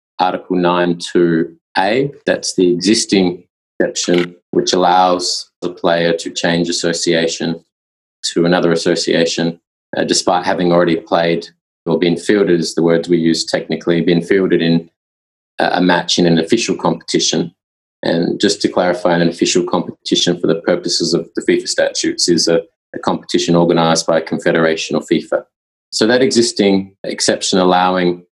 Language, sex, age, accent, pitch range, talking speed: English, male, 20-39, Australian, 85-95 Hz, 145 wpm